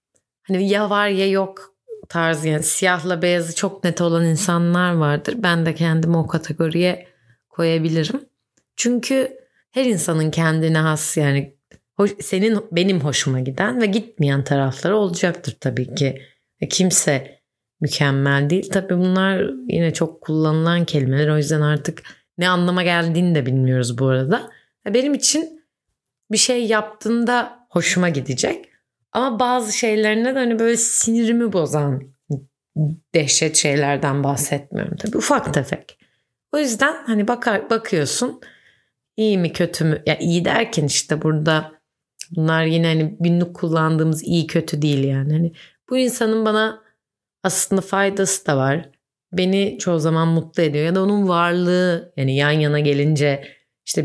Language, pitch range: Turkish, 150-205 Hz